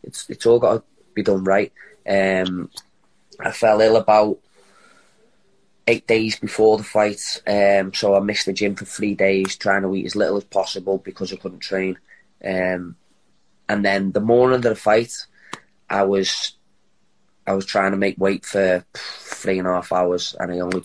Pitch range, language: 95-105 Hz, English